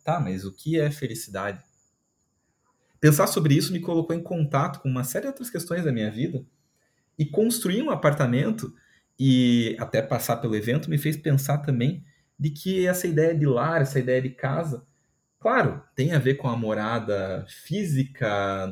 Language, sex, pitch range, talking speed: Portuguese, male, 125-155 Hz, 170 wpm